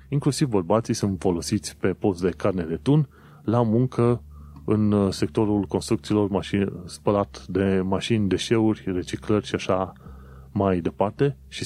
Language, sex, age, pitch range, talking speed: Romanian, male, 30-49, 90-115 Hz, 135 wpm